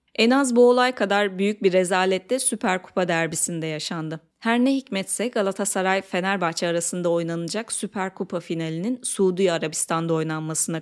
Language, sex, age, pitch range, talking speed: Turkish, female, 30-49, 170-210 Hz, 135 wpm